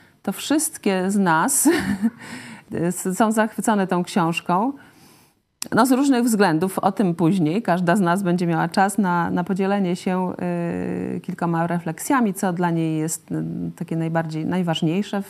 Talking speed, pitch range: 135 wpm, 170-215 Hz